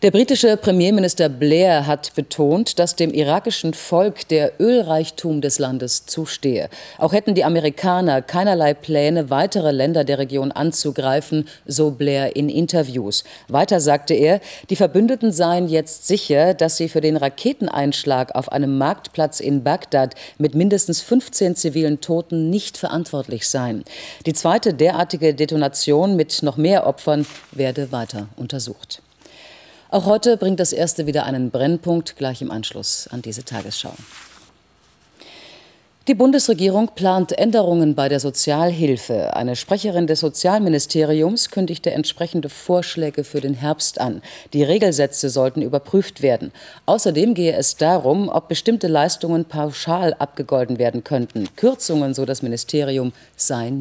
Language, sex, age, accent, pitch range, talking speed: German, female, 40-59, German, 140-180 Hz, 135 wpm